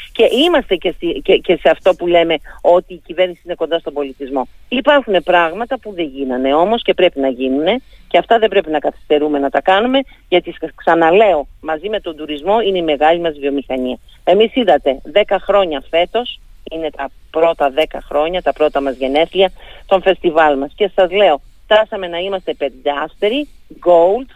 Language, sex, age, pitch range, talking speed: Greek, female, 40-59, 155-200 Hz, 170 wpm